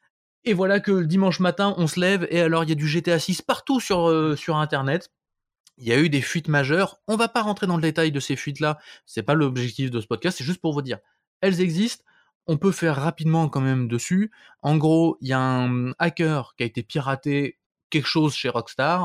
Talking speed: 235 wpm